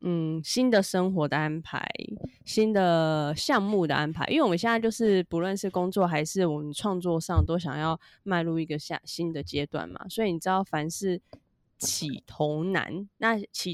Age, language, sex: 20-39, Chinese, female